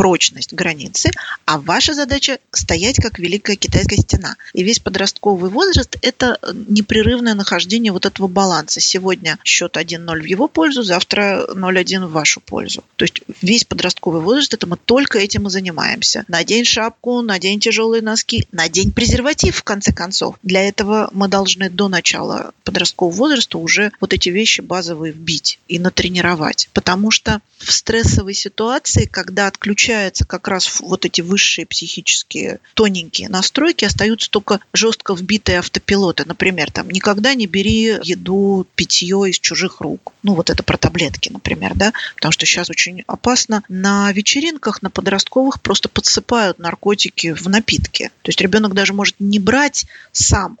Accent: native